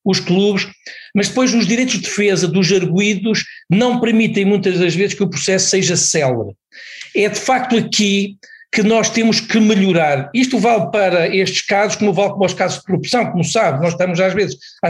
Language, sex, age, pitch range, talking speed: Portuguese, male, 50-69, 180-230 Hz, 195 wpm